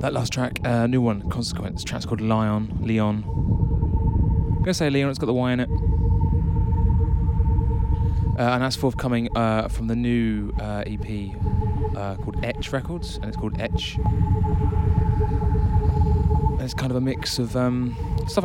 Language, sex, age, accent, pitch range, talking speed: English, male, 20-39, British, 95-125 Hz, 160 wpm